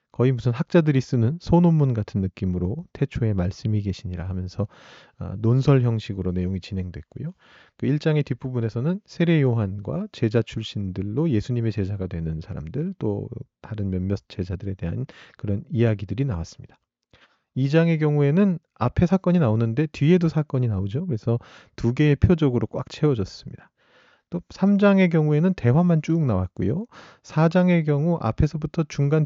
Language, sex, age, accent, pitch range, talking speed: English, male, 40-59, Korean, 105-155 Hz, 115 wpm